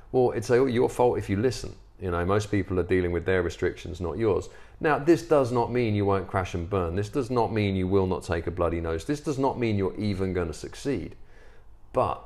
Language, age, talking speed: English, 40-59, 245 wpm